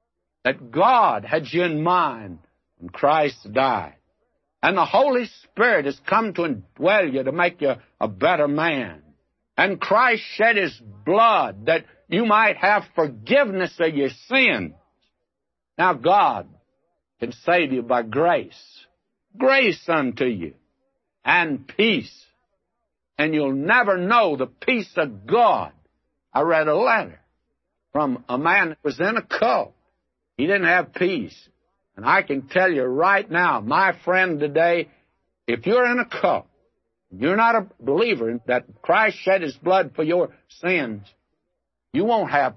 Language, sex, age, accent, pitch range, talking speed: English, male, 60-79, American, 135-190 Hz, 145 wpm